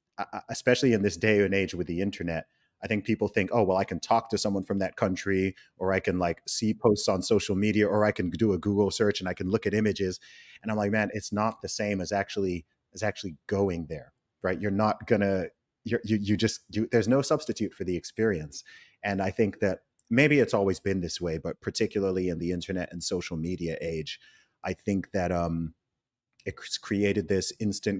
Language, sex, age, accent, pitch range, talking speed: English, male, 30-49, American, 90-110 Hz, 215 wpm